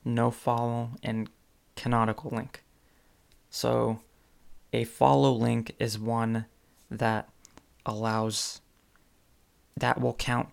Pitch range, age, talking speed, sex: 105-115 Hz, 20-39, 90 wpm, male